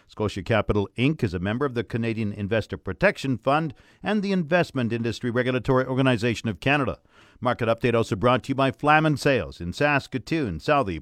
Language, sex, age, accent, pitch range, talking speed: English, male, 50-69, American, 110-145 Hz, 175 wpm